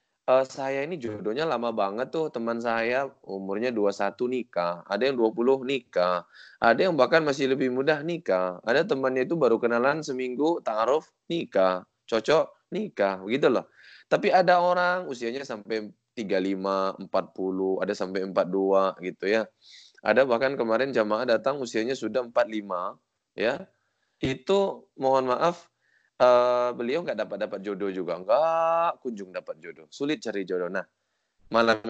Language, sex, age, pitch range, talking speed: Indonesian, male, 20-39, 100-135 Hz, 140 wpm